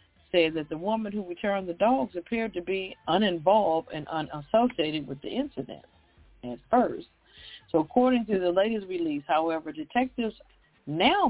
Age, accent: 50-69, American